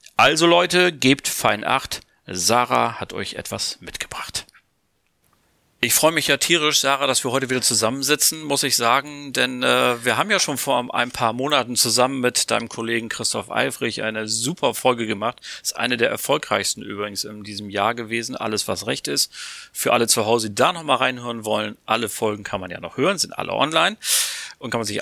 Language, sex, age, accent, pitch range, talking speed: German, male, 40-59, German, 115-140 Hz, 190 wpm